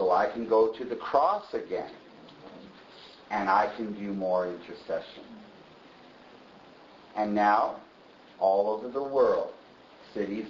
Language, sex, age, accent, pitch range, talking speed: English, male, 50-69, American, 120-195 Hz, 120 wpm